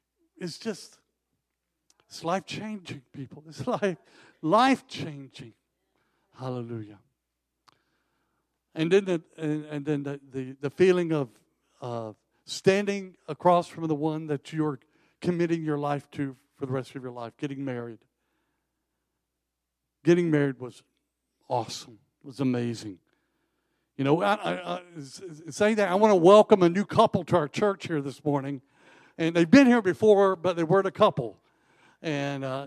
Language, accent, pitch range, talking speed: English, American, 140-210 Hz, 145 wpm